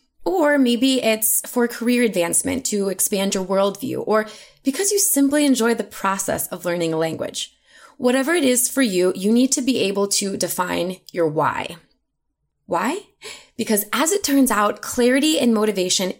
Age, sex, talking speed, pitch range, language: 20-39, female, 165 wpm, 180-250 Hz, English